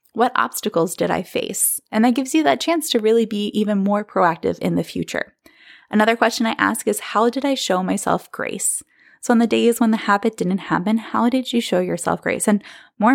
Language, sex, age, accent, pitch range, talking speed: English, female, 20-39, American, 175-230 Hz, 220 wpm